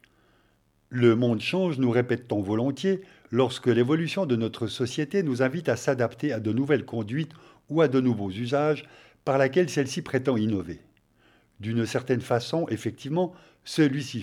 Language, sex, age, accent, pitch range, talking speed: French, male, 50-69, French, 115-150 Hz, 150 wpm